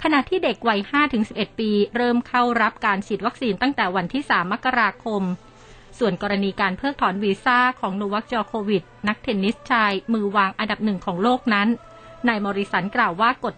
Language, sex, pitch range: Thai, female, 195-240 Hz